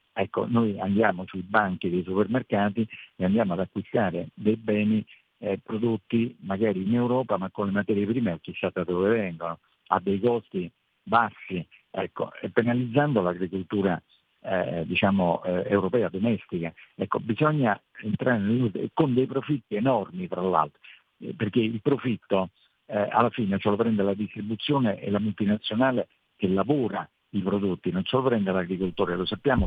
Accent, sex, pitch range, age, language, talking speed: native, male, 95-120 Hz, 50-69, Italian, 150 wpm